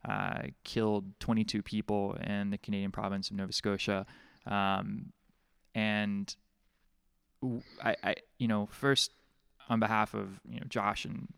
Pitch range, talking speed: 100-110 Hz, 130 wpm